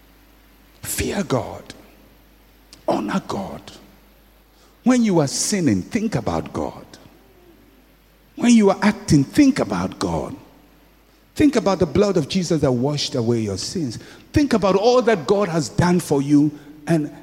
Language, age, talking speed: English, 60-79, 135 wpm